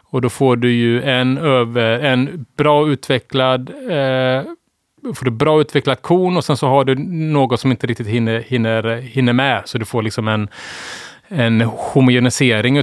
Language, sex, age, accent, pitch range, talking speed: Swedish, male, 30-49, Norwegian, 115-140 Hz, 170 wpm